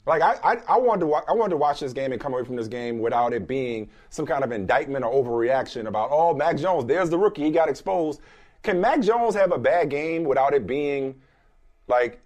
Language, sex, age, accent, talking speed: English, male, 30-49, American, 240 wpm